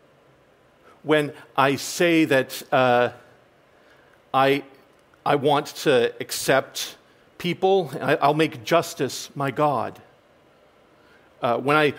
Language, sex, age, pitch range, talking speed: English, male, 40-59, 150-195 Hz, 95 wpm